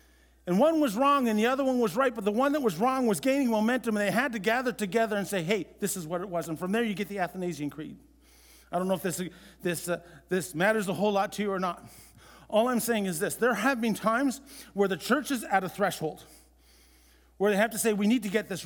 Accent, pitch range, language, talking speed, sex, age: American, 150-220 Hz, English, 265 wpm, male, 50-69